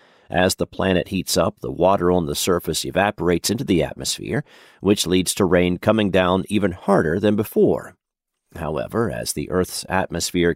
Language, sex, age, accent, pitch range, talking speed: English, male, 50-69, American, 90-110 Hz, 165 wpm